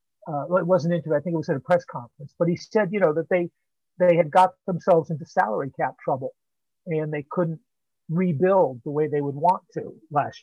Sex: male